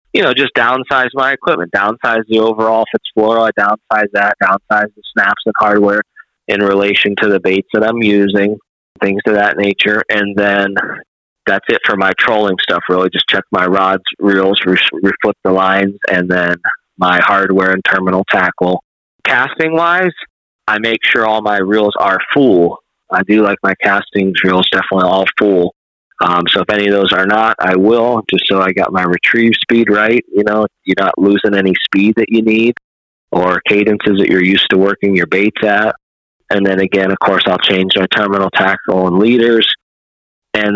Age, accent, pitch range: 20-39, American, 95-110 Hz